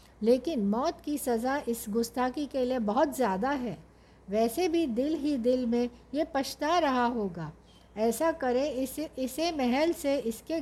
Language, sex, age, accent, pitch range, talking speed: Hindi, female, 60-79, native, 215-265 Hz, 160 wpm